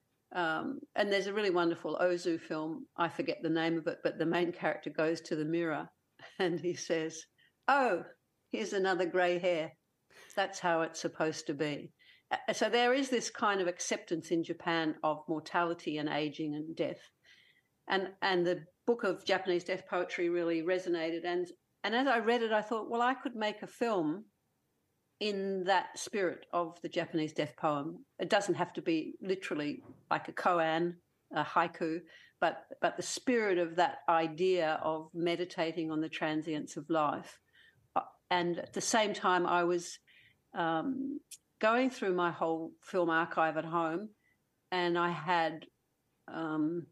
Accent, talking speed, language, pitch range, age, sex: Australian, 165 wpm, English, 165-195 Hz, 50-69, female